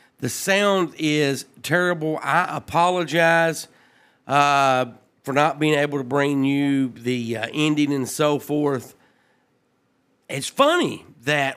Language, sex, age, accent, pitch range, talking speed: English, male, 40-59, American, 140-185 Hz, 120 wpm